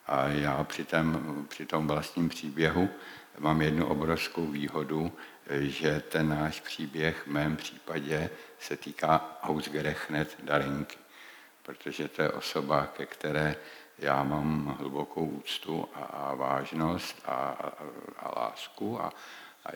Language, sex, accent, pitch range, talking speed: Czech, male, native, 75-90 Hz, 125 wpm